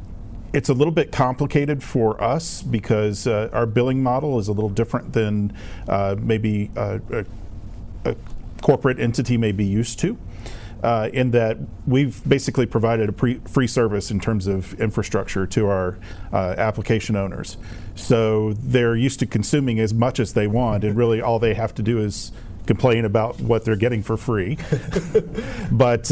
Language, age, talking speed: English, 40-59, 165 wpm